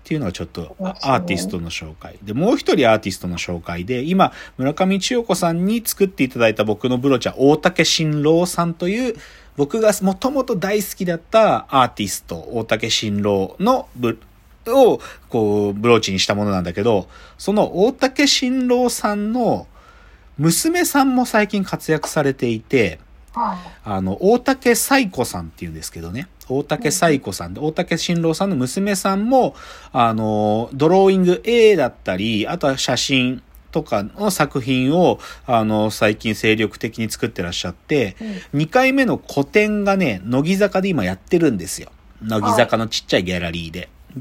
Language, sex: Japanese, male